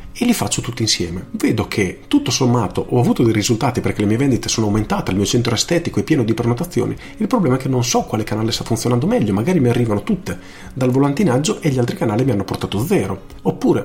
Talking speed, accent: 230 wpm, native